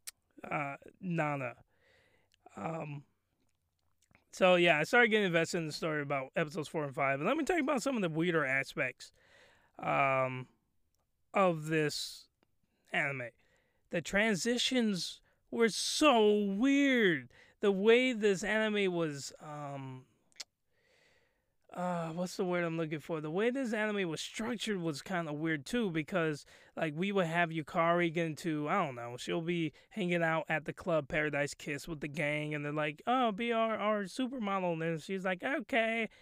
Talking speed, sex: 160 wpm, male